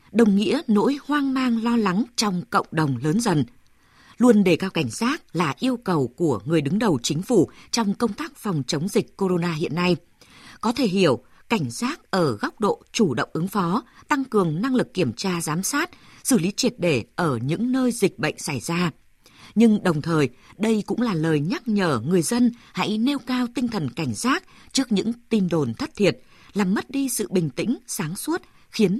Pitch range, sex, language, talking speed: 165-230 Hz, female, Vietnamese, 205 wpm